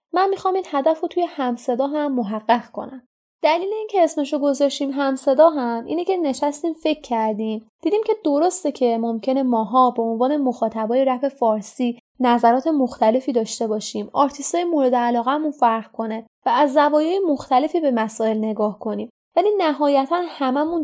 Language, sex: Persian, female